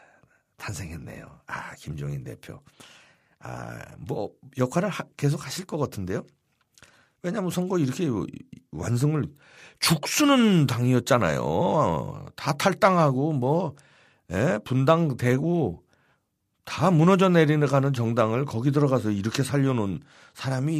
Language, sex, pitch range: Korean, male, 115-165 Hz